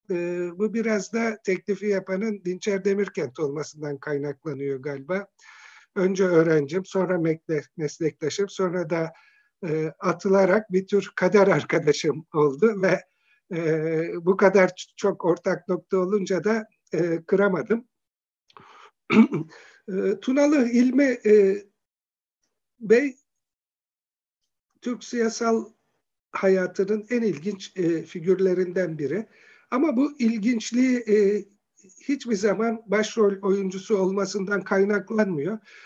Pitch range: 180-220 Hz